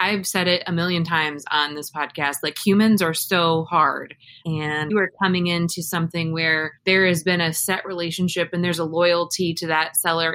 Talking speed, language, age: 195 wpm, English, 20-39